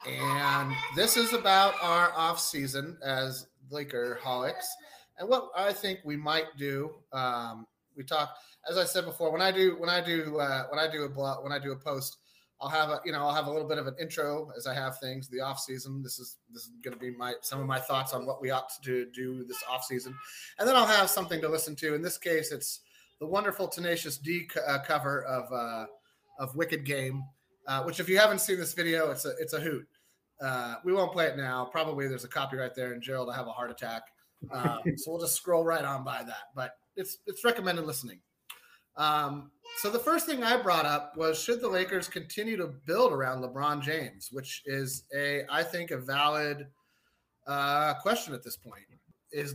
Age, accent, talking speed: 30-49, American, 220 wpm